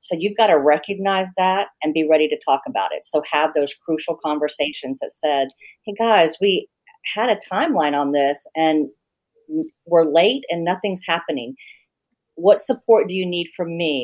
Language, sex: English, female